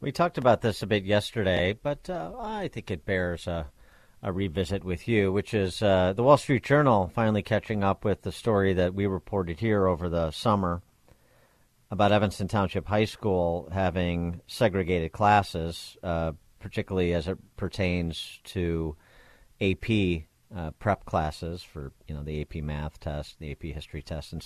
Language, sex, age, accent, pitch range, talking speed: English, male, 50-69, American, 85-105 Hz, 165 wpm